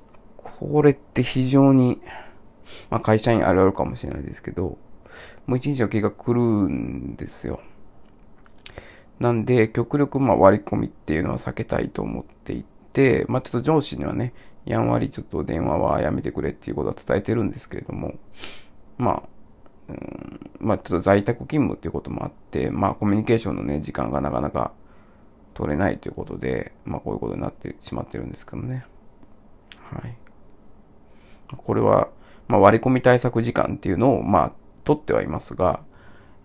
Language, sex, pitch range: Japanese, male, 95-125 Hz